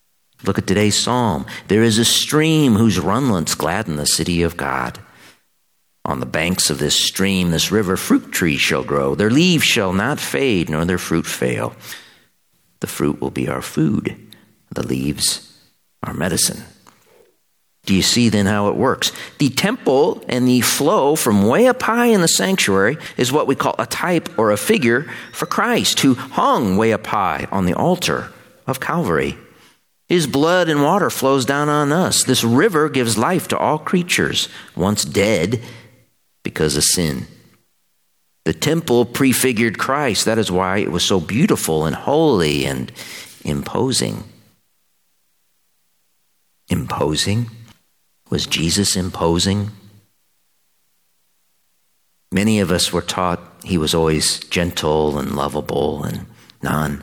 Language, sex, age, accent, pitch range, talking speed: English, male, 50-69, American, 75-125 Hz, 145 wpm